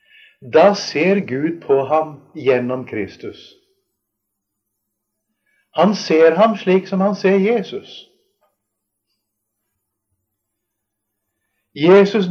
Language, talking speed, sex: English, 80 wpm, male